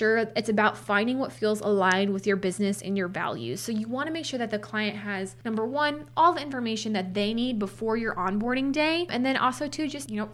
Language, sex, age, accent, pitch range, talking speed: English, female, 20-39, American, 200-245 Hz, 240 wpm